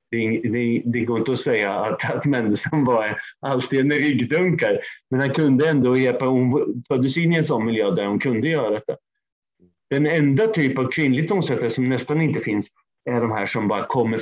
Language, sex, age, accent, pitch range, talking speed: Swedish, male, 30-49, native, 110-145 Hz, 195 wpm